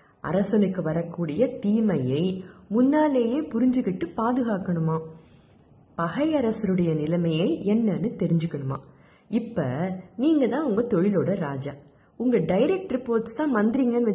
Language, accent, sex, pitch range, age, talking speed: Tamil, native, female, 160-210 Hz, 30-49, 95 wpm